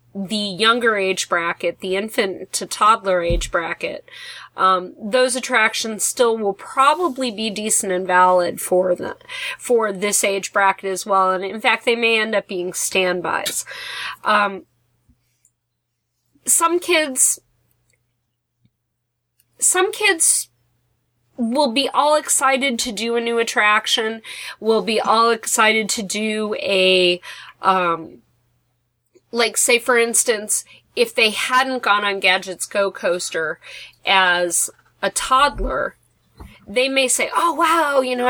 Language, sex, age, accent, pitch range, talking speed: English, female, 30-49, American, 180-245 Hz, 125 wpm